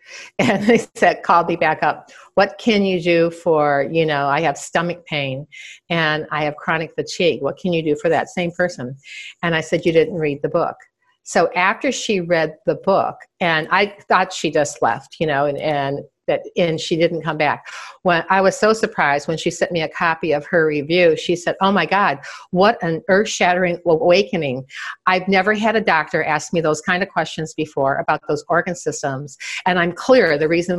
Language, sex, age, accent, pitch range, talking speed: English, female, 50-69, American, 155-190 Hz, 200 wpm